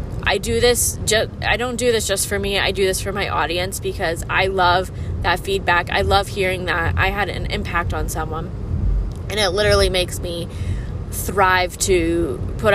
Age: 20-39